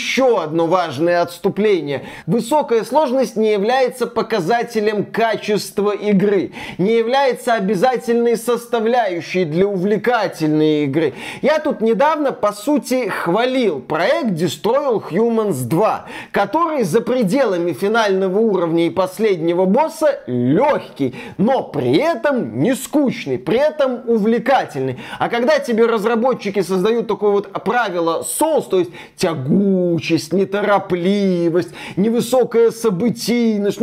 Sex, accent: male, native